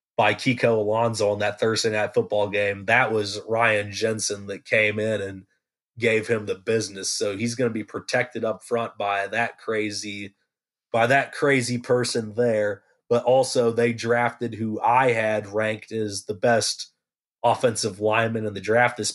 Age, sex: 30-49, male